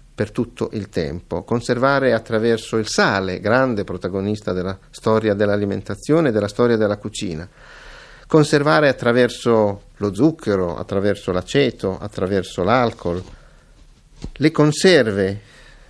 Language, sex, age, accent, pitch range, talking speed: Italian, male, 50-69, native, 105-140 Hz, 105 wpm